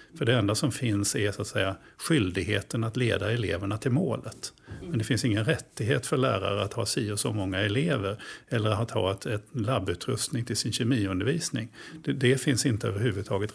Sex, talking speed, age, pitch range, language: male, 185 wpm, 50-69, 105-135 Hz, Swedish